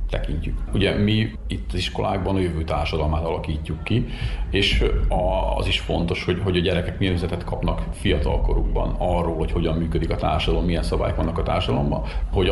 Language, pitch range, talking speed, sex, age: Hungarian, 80-105 Hz, 165 wpm, male, 40-59